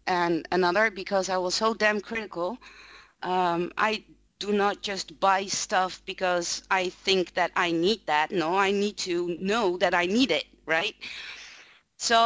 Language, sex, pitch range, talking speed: English, female, 180-230 Hz, 160 wpm